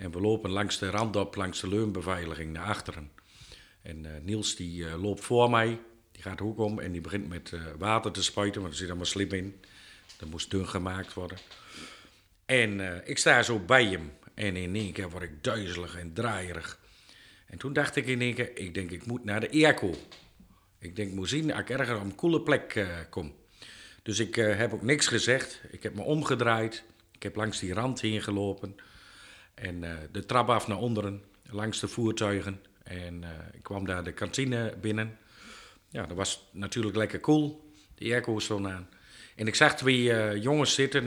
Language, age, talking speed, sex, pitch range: Dutch, 50-69, 205 wpm, male, 95-115 Hz